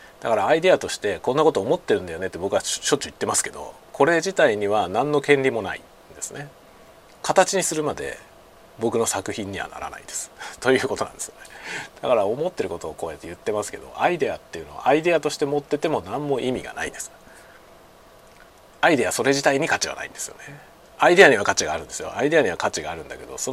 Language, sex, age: Japanese, male, 40-59